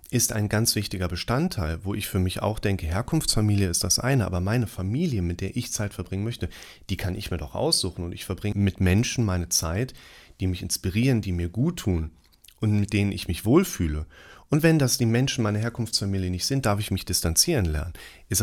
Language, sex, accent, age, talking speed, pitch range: German, male, German, 30-49, 210 wpm, 90-115 Hz